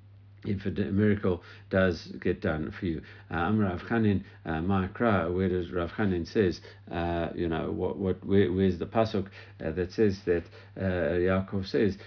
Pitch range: 85-105 Hz